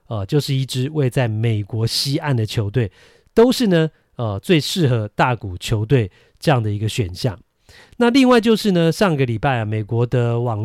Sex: male